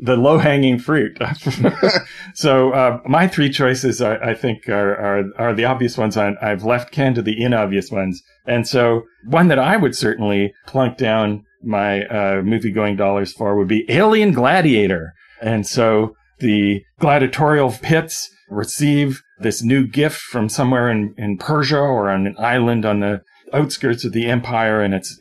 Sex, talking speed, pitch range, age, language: male, 170 wpm, 100-130 Hz, 40-59, English